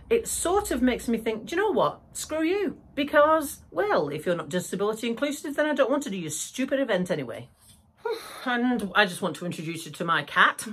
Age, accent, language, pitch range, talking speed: 40-59, British, English, 190-260 Hz, 220 wpm